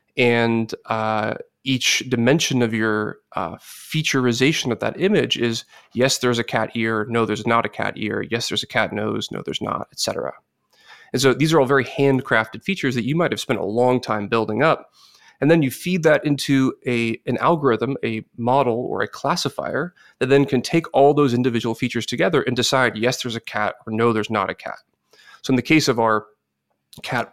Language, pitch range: English, 115-135 Hz